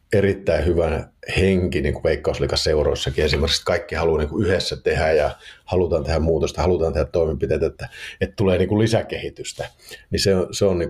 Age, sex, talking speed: 50-69, male, 170 wpm